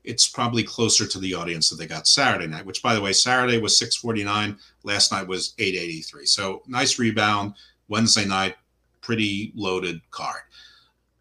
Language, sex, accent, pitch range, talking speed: English, male, American, 100-160 Hz, 160 wpm